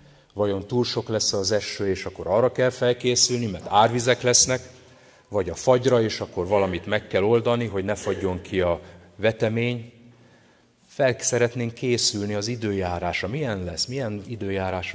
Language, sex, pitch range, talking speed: Hungarian, male, 105-125 Hz, 155 wpm